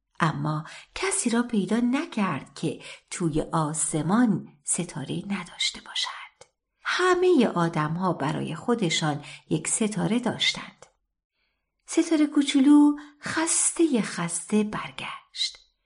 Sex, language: female, Persian